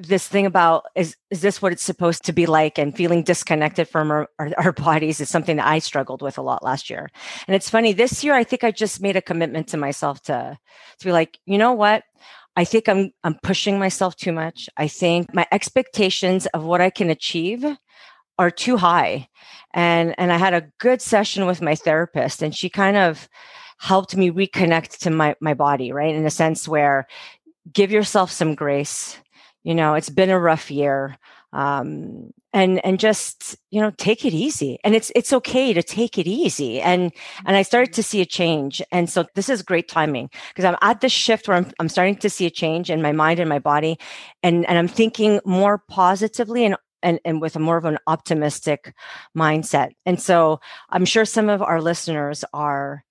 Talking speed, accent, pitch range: 205 wpm, American, 160-200 Hz